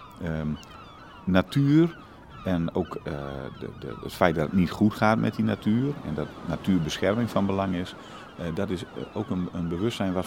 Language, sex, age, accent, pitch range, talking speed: Dutch, male, 50-69, Dutch, 75-95 Hz, 180 wpm